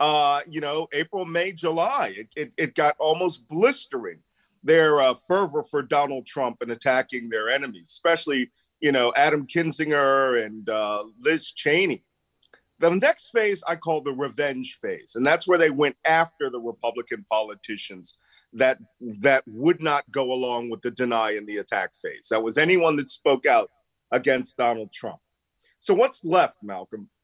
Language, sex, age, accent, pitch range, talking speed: English, male, 40-59, American, 130-180 Hz, 165 wpm